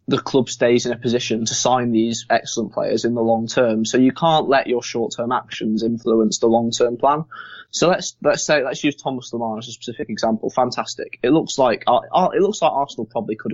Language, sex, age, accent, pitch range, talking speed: English, male, 20-39, British, 110-130 Hz, 225 wpm